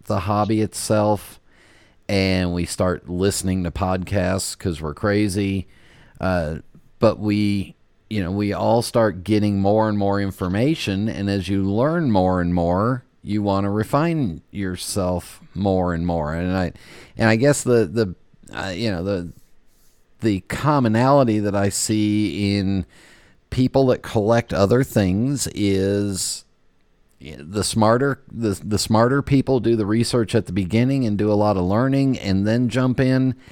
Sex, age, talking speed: male, 40-59, 150 wpm